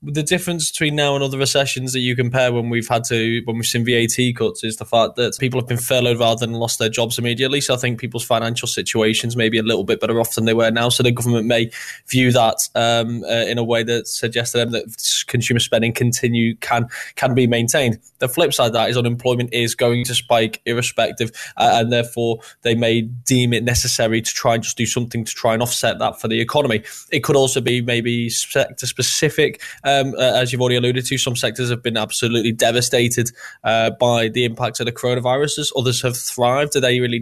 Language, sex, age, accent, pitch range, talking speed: English, male, 10-29, British, 115-125 Hz, 225 wpm